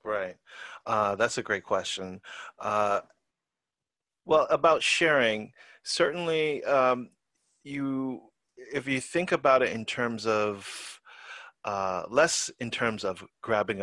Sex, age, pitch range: male, 30-49, 95-115 Hz